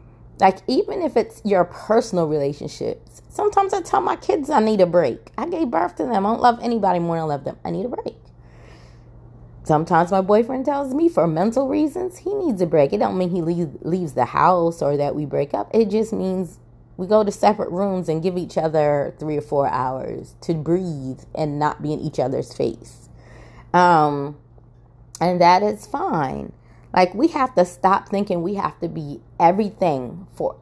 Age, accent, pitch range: 20-39, American, 145-190 Hz